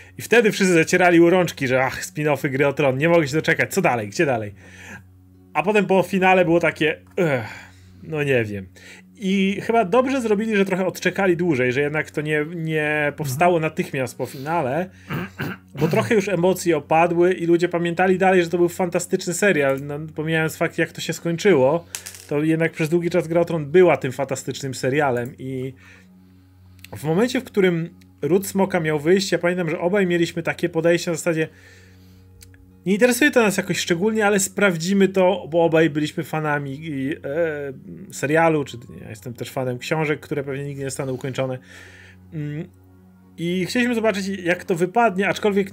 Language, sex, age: Polish, male, 30-49